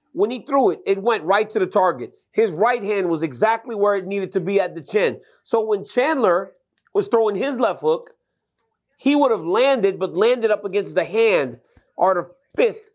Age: 30-49